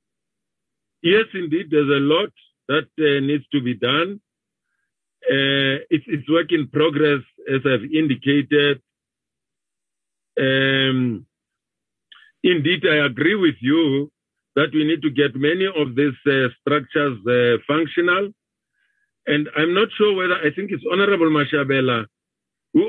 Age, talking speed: 50-69, 130 wpm